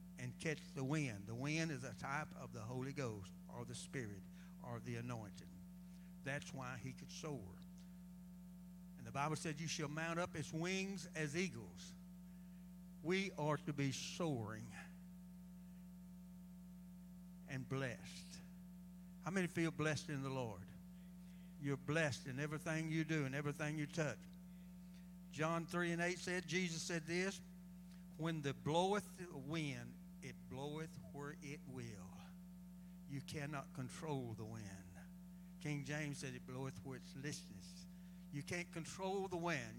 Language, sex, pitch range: English, male, 150-180 Hz